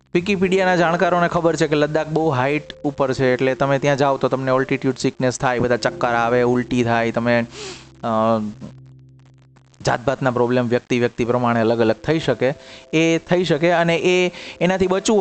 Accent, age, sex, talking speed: native, 30-49, male, 160 wpm